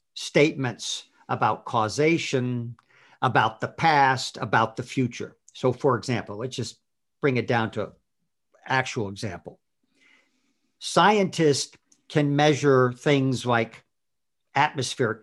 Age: 50-69